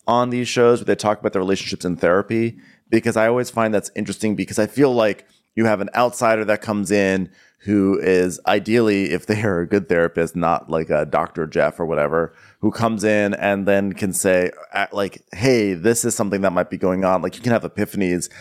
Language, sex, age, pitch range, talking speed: English, male, 30-49, 100-145 Hz, 215 wpm